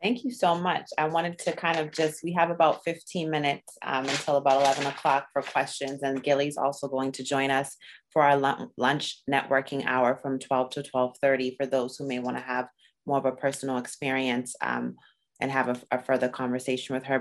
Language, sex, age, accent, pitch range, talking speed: English, female, 30-49, American, 135-160 Hz, 200 wpm